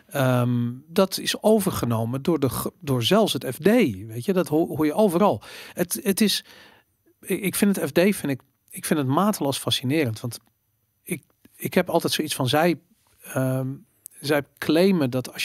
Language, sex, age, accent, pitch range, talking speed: Dutch, male, 40-59, Dutch, 125-155 Hz, 165 wpm